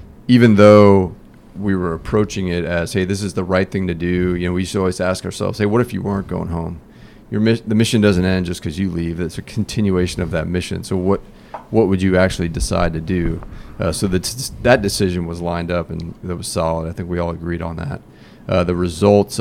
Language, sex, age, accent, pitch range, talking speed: English, male, 30-49, American, 85-100 Hz, 240 wpm